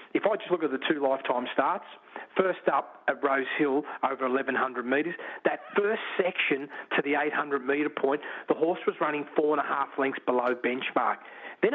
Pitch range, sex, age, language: 140-235 Hz, male, 40-59, English